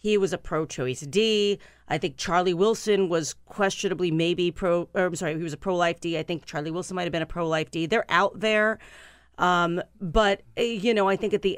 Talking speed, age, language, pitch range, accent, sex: 220 wpm, 40-59, English, 165-215 Hz, American, female